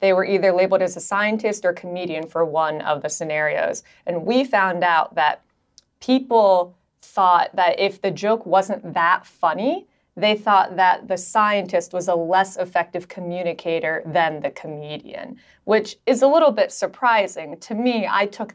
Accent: American